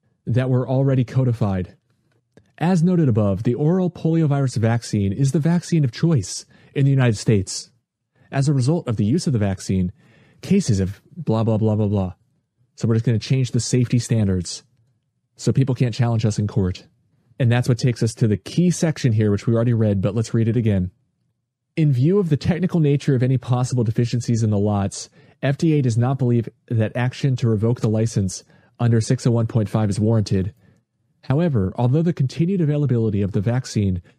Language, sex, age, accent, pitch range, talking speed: English, male, 30-49, American, 110-145 Hz, 185 wpm